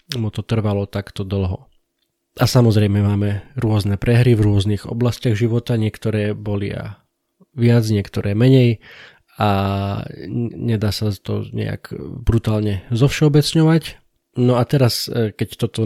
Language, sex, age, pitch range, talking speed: Slovak, male, 20-39, 105-120 Hz, 120 wpm